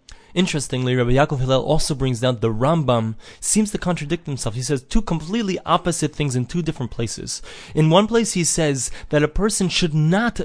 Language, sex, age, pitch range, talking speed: English, male, 20-39, 130-170 Hz, 190 wpm